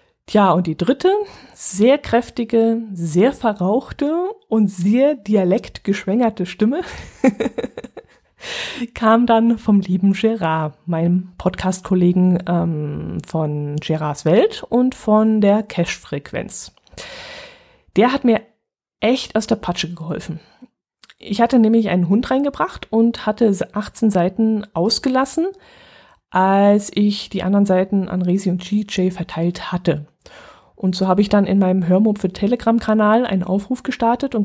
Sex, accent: female, German